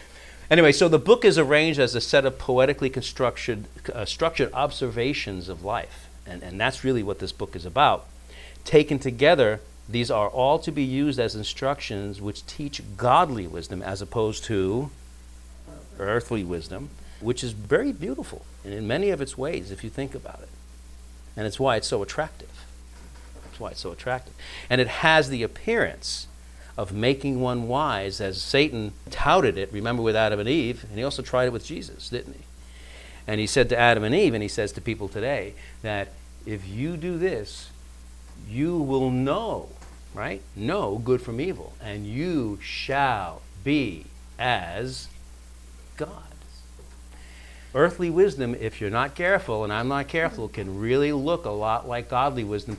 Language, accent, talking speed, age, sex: English, American, 165 wpm, 50-69, male